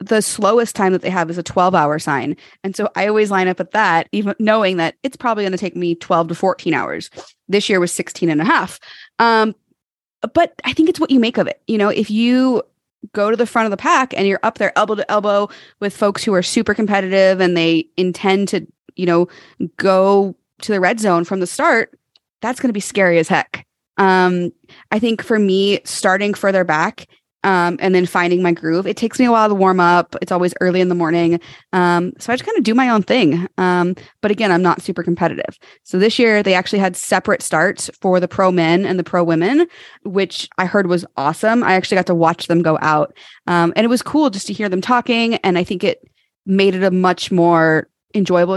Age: 20-39